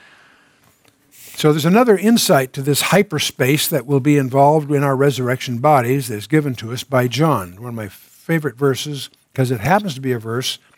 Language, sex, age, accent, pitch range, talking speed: English, male, 60-79, American, 130-175 Hz, 190 wpm